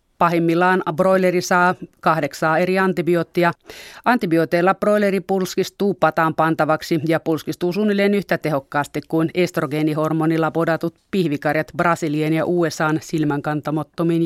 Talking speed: 100 wpm